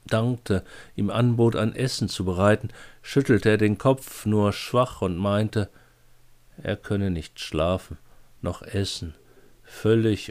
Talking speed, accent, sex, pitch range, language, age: 130 wpm, German, male, 95-120 Hz, German, 50-69